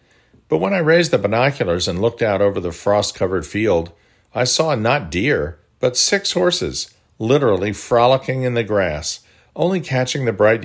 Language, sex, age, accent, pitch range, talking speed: English, male, 50-69, American, 95-120 Hz, 165 wpm